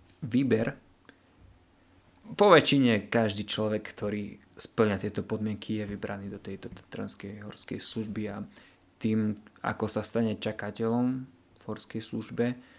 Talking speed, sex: 115 wpm, male